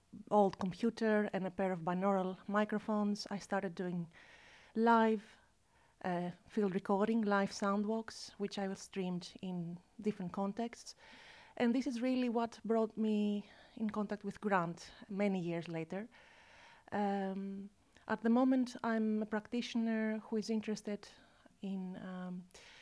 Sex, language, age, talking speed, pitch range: female, English, 30-49, 135 wpm, 190-220 Hz